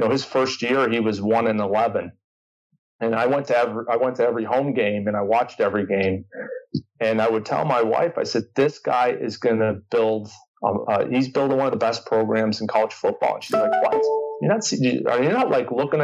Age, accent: 30-49, American